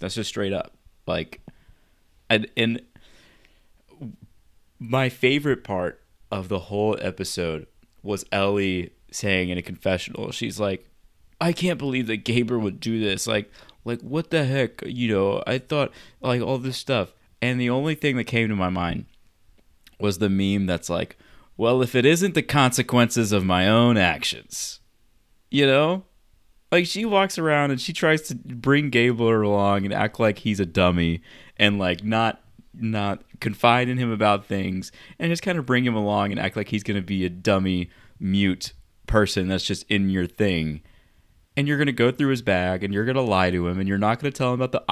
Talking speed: 190 wpm